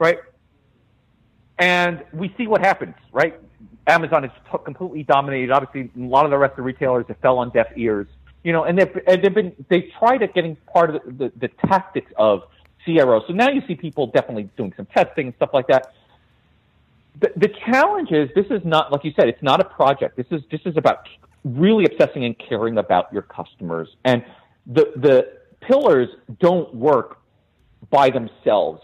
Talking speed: 190 wpm